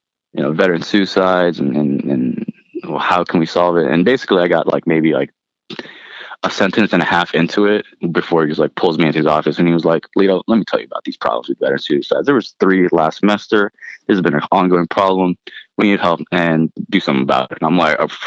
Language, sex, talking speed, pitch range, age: English, male, 240 wpm, 80-95 Hz, 20-39